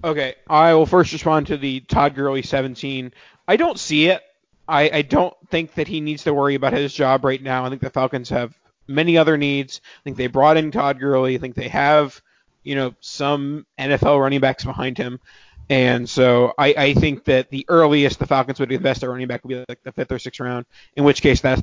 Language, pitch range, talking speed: English, 130-150 Hz, 230 wpm